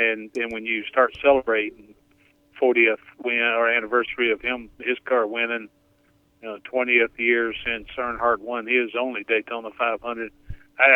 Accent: American